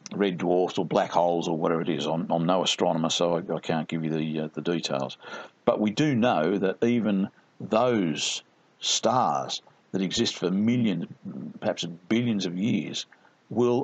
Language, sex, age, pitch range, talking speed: English, male, 50-69, 95-150 Hz, 175 wpm